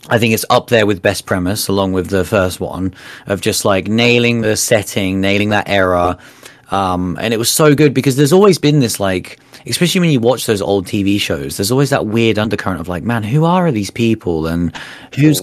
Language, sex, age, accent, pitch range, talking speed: English, male, 30-49, British, 95-120 Hz, 220 wpm